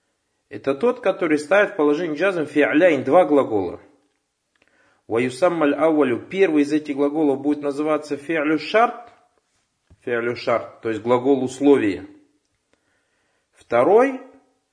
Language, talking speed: Russian, 95 wpm